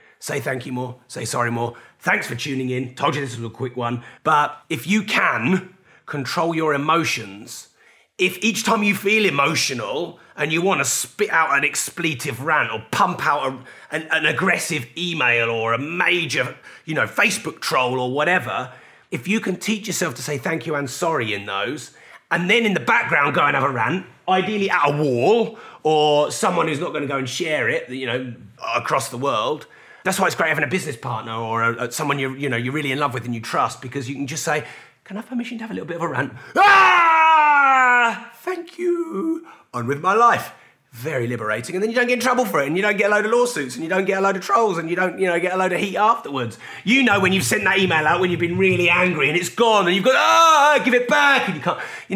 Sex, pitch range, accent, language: male, 130-215 Hz, British, English